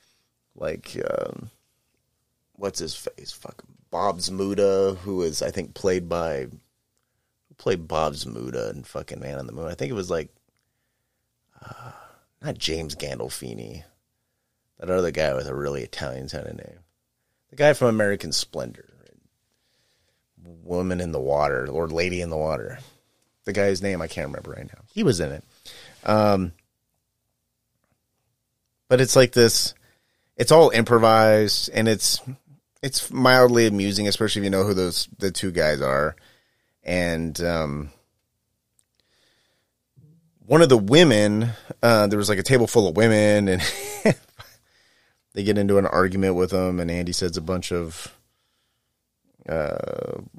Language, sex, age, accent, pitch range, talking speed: English, male, 30-49, American, 85-115 Hz, 145 wpm